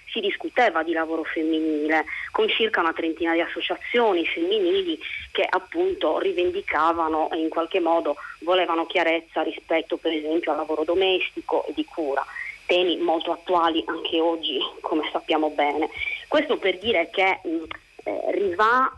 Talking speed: 135 wpm